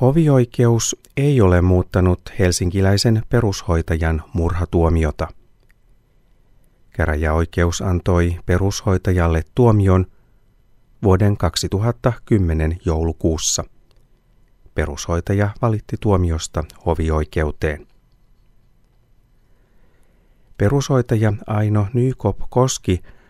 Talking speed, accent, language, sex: 55 wpm, native, Finnish, male